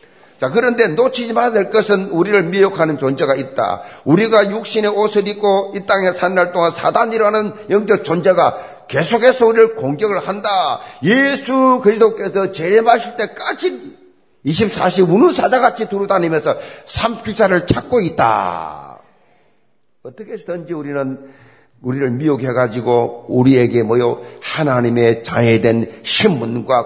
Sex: male